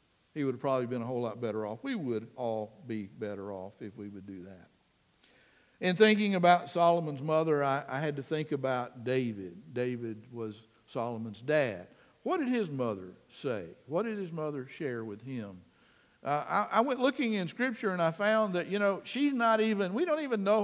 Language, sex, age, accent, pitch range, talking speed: English, male, 60-79, American, 130-185 Hz, 200 wpm